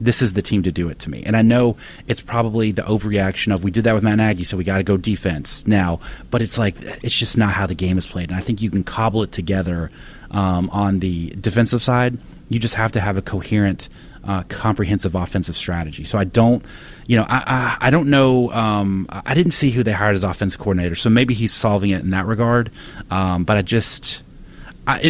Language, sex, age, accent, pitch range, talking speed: English, male, 30-49, American, 95-120 Hz, 235 wpm